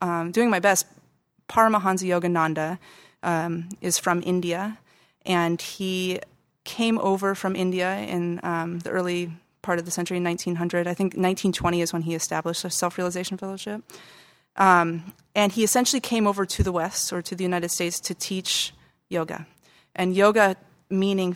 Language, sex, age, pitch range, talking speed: English, female, 30-49, 170-190 Hz, 155 wpm